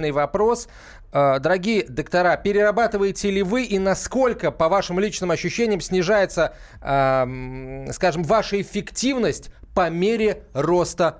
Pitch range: 135-185 Hz